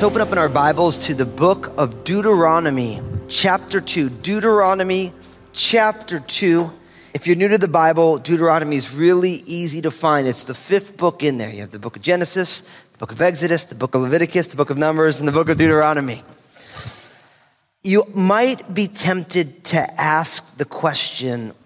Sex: male